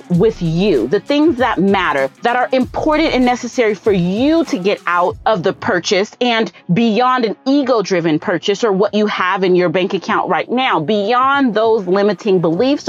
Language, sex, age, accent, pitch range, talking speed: English, female, 30-49, American, 190-260 Hz, 175 wpm